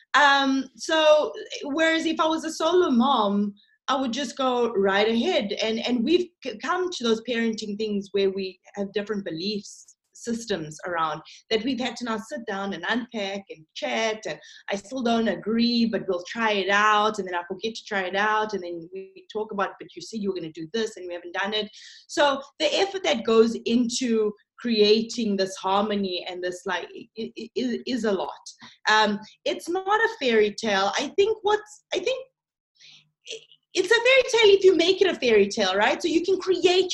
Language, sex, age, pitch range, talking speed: English, female, 20-39, 205-285 Hz, 195 wpm